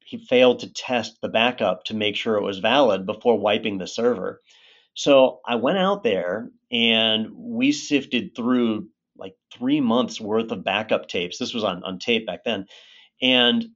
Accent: American